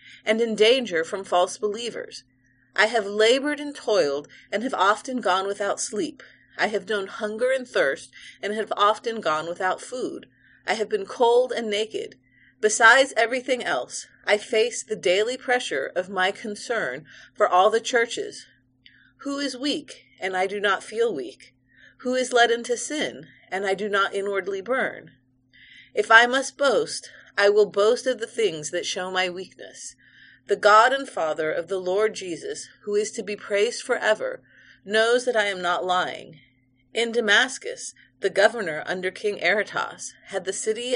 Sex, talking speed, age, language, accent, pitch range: female, 170 wpm, 30-49, English, American, 190-255 Hz